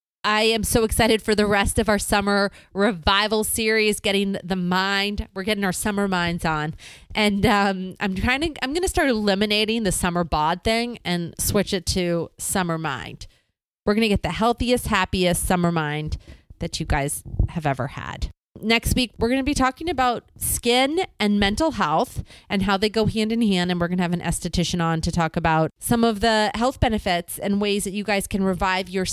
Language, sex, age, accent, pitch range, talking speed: English, female, 30-49, American, 175-220 Hz, 205 wpm